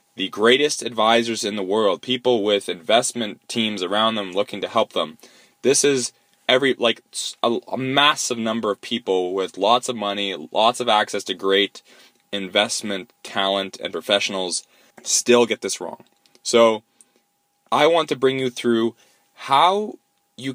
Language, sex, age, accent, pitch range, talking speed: English, male, 20-39, American, 100-125 Hz, 150 wpm